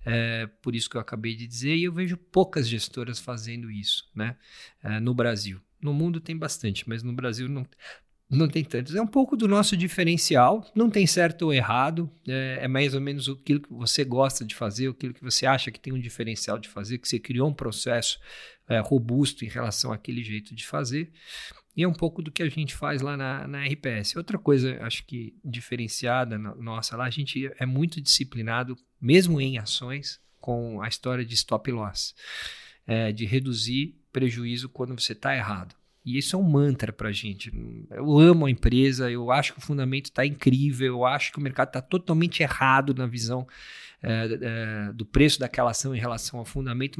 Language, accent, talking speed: English, Brazilian, 195 wpm